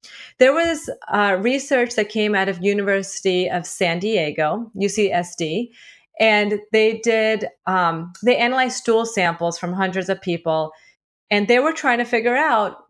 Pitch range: 180-235 Hz